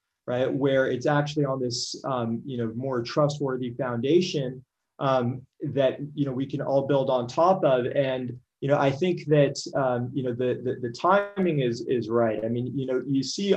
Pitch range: 130-155 Hz